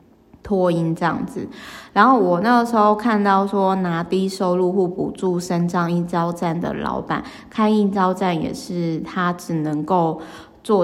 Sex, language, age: female, Chinese, 20-39